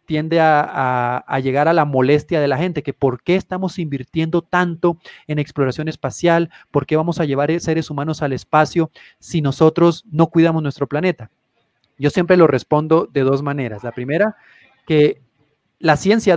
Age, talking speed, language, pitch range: 30-49, 170 wpm, Spanish, 140-175 Hz